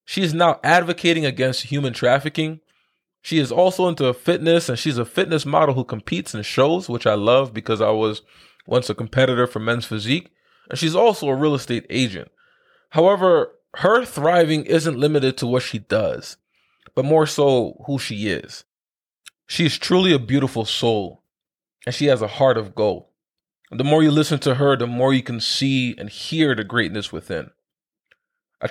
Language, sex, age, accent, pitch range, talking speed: English, male, 20-39, American, 120-155 Hz, 175 wpm